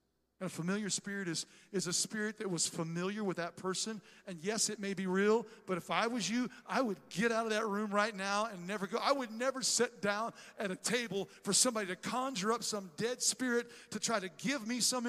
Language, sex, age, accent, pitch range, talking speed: English, male, 50-69, American, 185-230 Hz, 235 wpm